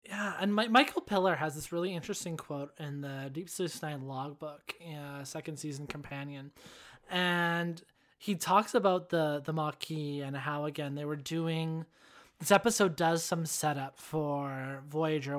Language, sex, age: English, male, 20-39